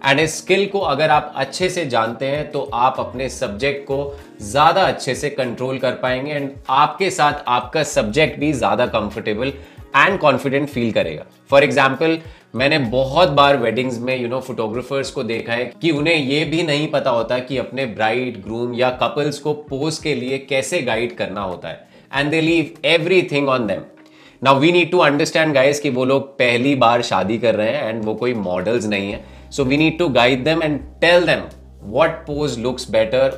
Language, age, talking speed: Hindi, 30-49, 190 wpm